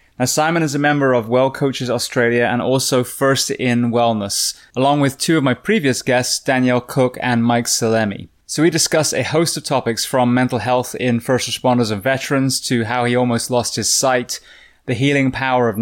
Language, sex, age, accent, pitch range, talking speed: English, male, 20-39, British, 115-135 Hz, 195 wpm